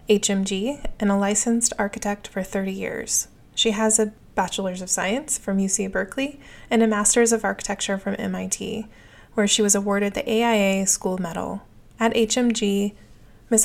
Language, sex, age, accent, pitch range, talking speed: English, female, 20-39, American, 200-230 Hz, 155 wpm